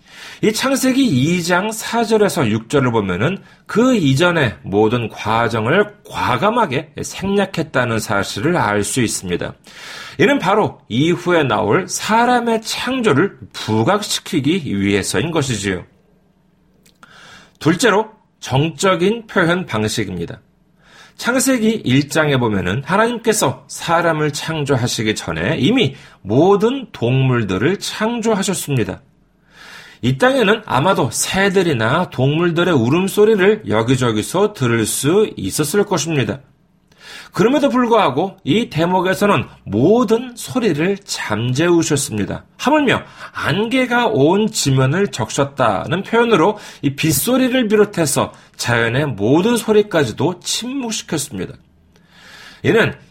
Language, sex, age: Korean, male, 40-59